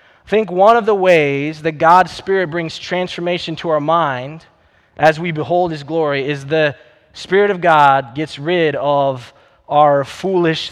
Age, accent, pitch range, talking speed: 20-39, American, 135-180 Hz, 160 wpm